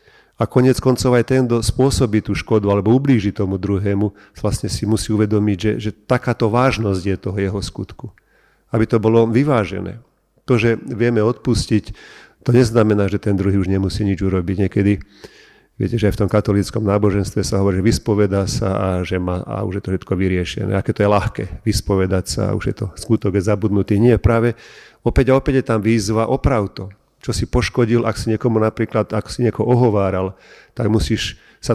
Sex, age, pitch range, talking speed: male, 40-59, 100-115 Hz, 185 wpm